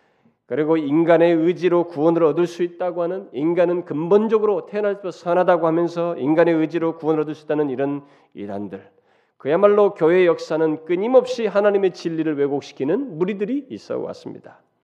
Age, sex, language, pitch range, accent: 40-59, male, Korean, 170-245 Hz, native